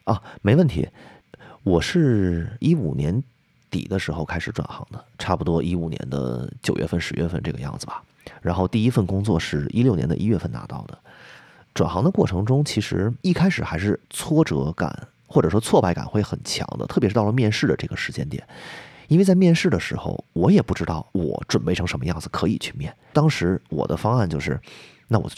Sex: male